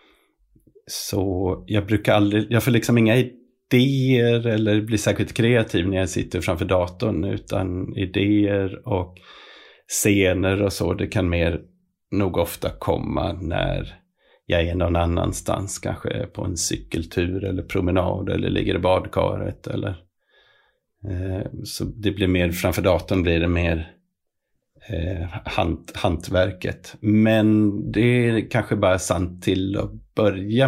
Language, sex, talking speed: Swedish, male, 130 wpm